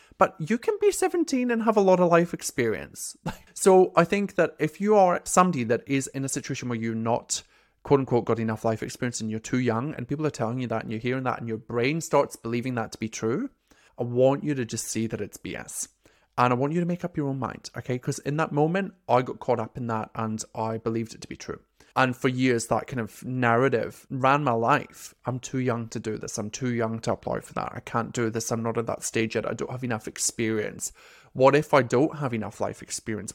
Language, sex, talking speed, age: English, male, 250 wpm, 20-39